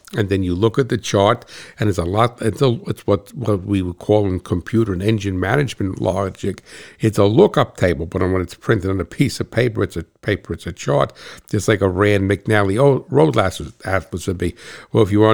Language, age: English, 60-79